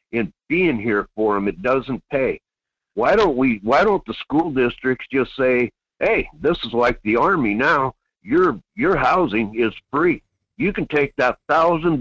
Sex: male